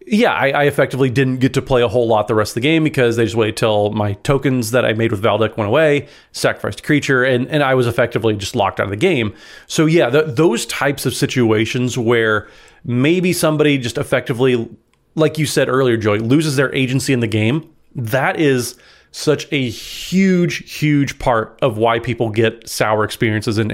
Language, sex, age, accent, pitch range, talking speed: English, male, 30-49, American, 120-155 Hz, 205 wpm